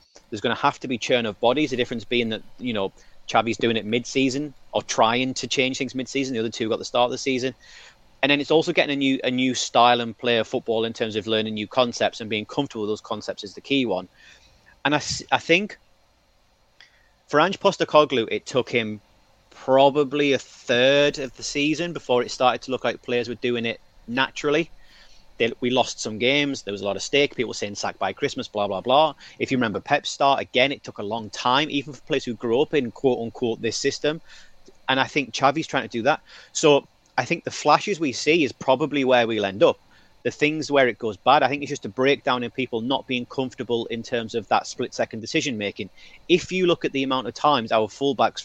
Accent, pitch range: British, 115-140 Hz